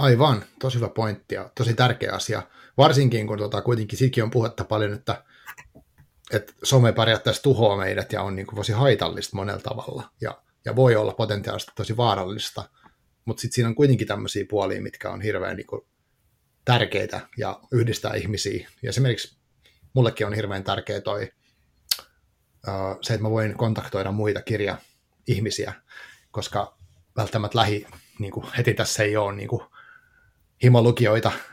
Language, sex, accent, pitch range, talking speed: Finnish, male, native, 105-125 Hz, 150 wpm